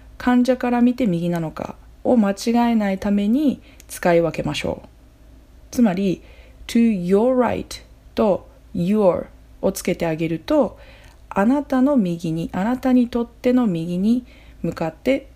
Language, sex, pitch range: Japanese, female, 170-230 Hz